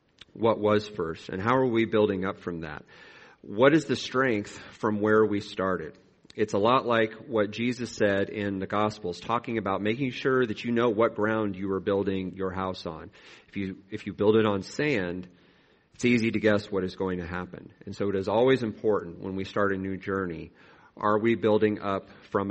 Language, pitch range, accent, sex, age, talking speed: English, 95-115 Hz, American, male, 40-59, 210 wpm